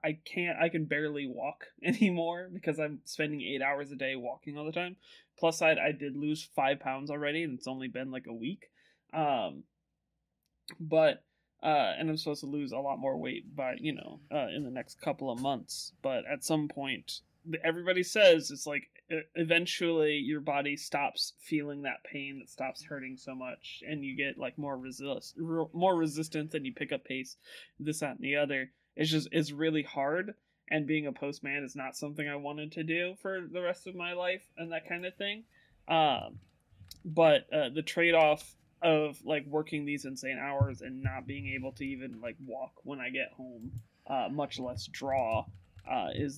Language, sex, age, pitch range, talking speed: English, male, 20-39, 135-160 Hz, 195 wpm